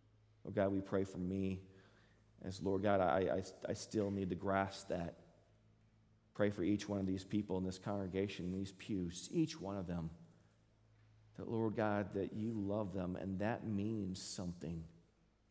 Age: 40-59